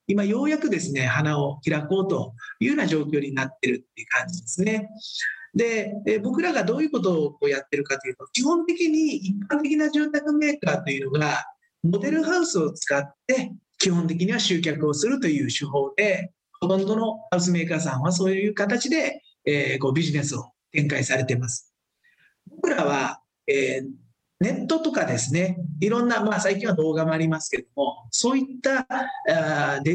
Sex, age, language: male, 40-59, Japanese